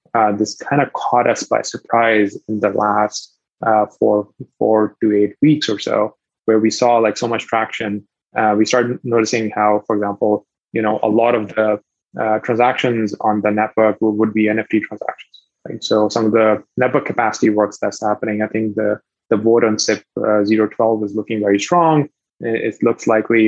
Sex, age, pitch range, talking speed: male, 20-39, 105-125 Hz, 190 wpm